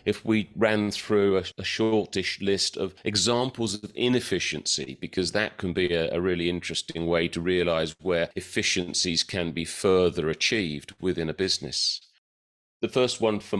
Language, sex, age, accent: English, male, 40-59, British